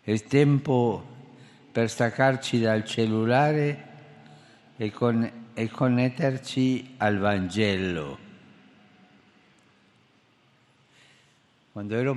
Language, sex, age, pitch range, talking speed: Italian, male, 60-79, 110-130 Hz, 75 wpm